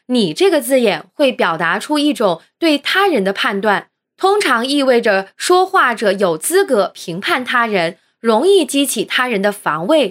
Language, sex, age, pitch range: Chinese, female, 20-39, 205-315 Hz